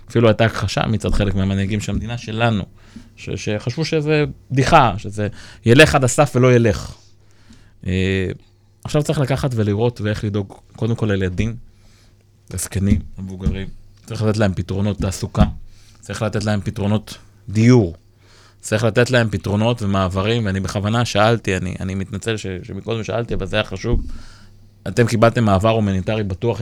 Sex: male